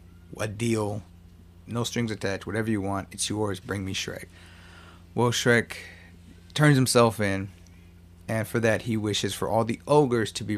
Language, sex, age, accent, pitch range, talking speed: English, male, 30-49, American, 90-120 Hz, 165 wpm